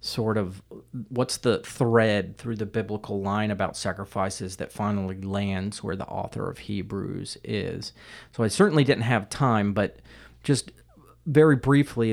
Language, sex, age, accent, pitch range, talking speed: English, male, 40-59, American, 95-120 Hz, 150 wpm